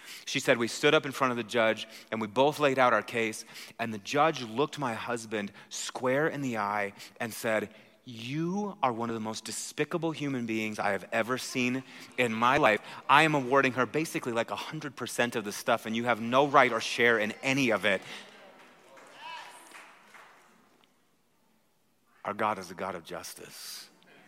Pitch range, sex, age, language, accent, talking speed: 110-135 Hz, male, 30-49, English, American, 180 wpm